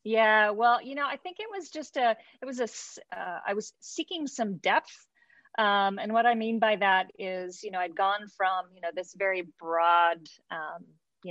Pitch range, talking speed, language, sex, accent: 175-210 Hz, 205 wpm, English, female, American